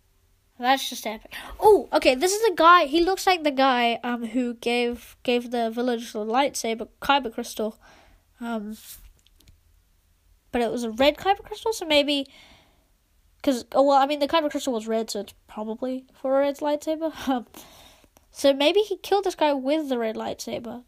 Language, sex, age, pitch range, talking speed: English, female, 10-29, 235-300 Hz, 180 wpm